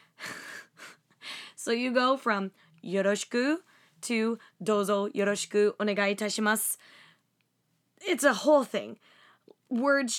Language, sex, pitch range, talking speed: English, female, 195-230 Hz, 80 wpm